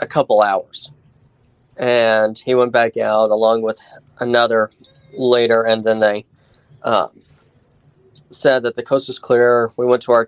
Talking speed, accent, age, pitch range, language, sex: 150 wpm, American, 30-49, 115-140 Hz, English, male